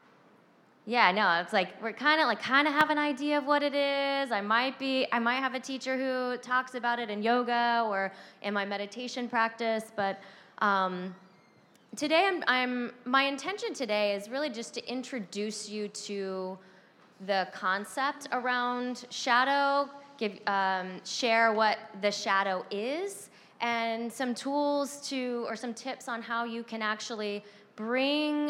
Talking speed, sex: 160 wpm, female